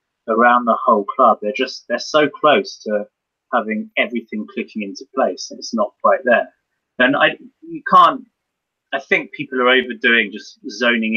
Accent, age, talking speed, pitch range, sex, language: British, 30-49, 165 wpm, 100-140 Hz, male, English